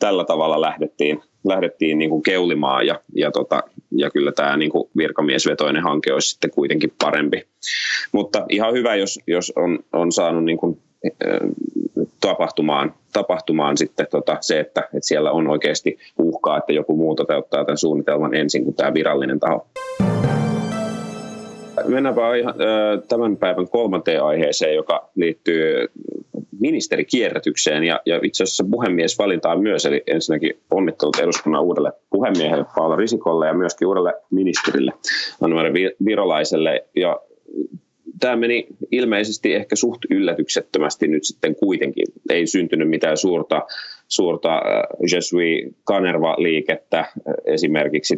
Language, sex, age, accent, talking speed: Finnish, male, 30-49, native, 120 wpm